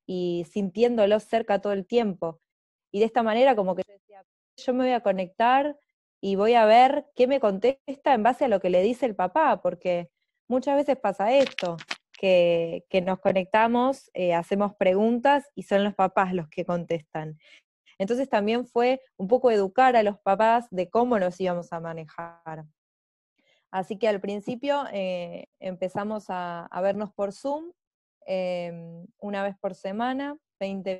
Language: Spanish